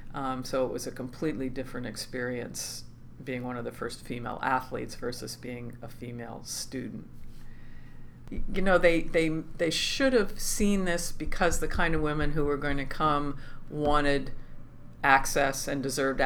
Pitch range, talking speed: 125-150 Hz, 160 wpm